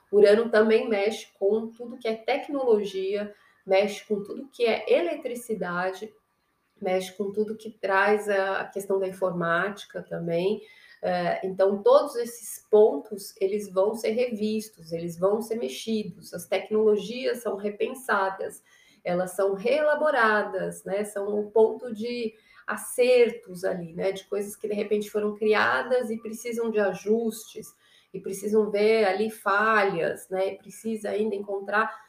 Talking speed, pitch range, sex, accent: 135 wpm, 195-235 Hz, female, Brazilian